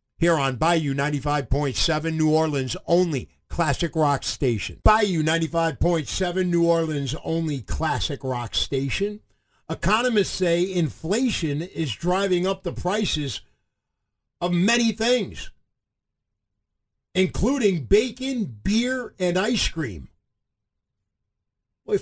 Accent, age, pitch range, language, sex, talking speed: American, 50-69, 125-180 Hz, English, male, 100 wpm